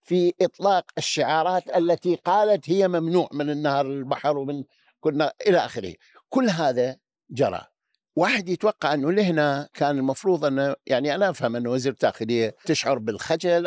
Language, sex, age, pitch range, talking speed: Arabic, male, 60-79, 135-180 Hz, 140 wpm